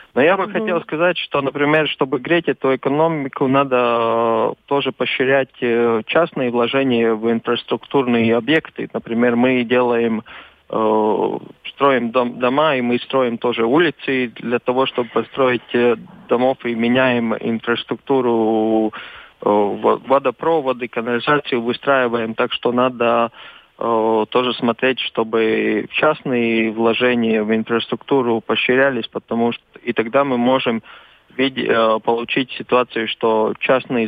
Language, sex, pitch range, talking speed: Russian, male, 115-130 Hz, 110 wpm